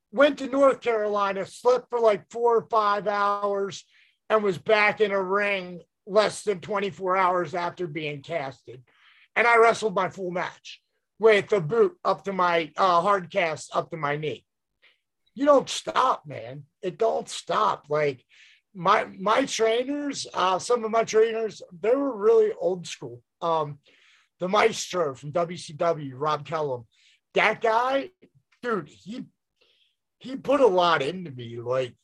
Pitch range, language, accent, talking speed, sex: 160-225 Hz, English, American, 155 wpm, male